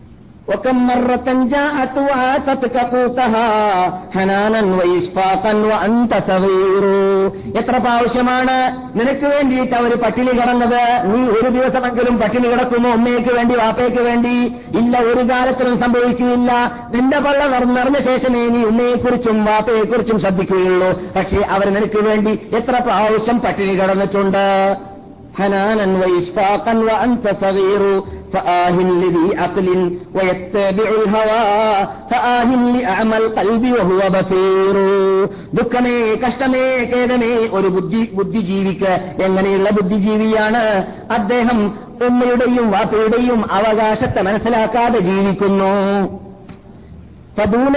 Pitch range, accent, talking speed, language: 195-245 Hz, native, 60 wpm, Malayalam